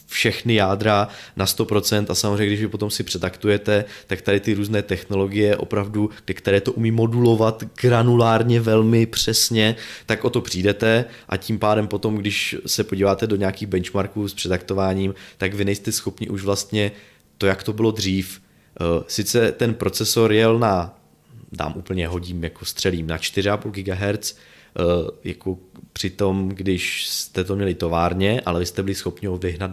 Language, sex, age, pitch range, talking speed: Czech, male, 20-39, 95-115 Hz, 160 wpm